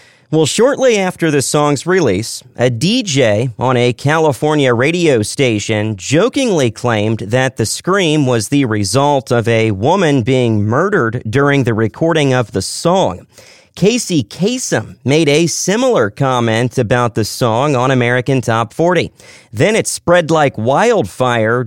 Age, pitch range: 40-59, 120-155 Hz